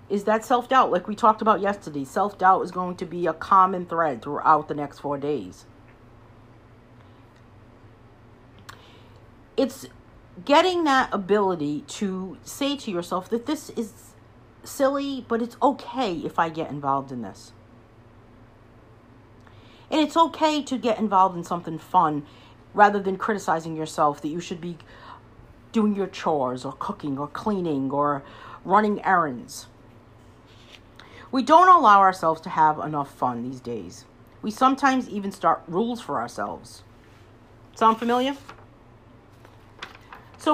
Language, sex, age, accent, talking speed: English, female, 50-69, American, 130 wpm